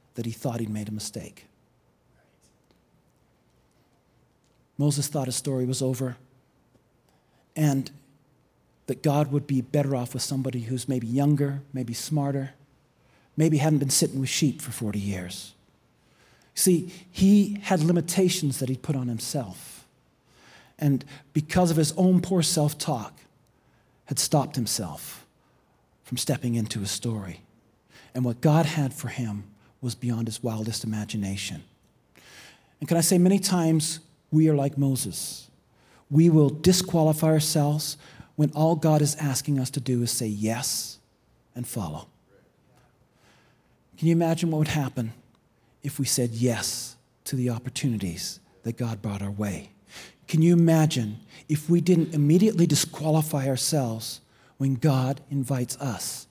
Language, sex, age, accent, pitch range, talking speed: English, male, 40-59, American, 120-155 Hz, 135 wpm